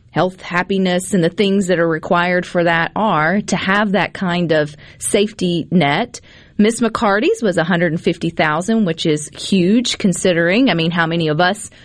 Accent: American